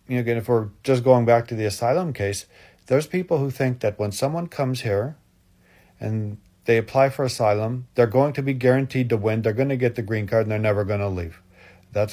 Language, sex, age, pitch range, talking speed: English, male, 40-59, 105-135 Hz, 230 wpm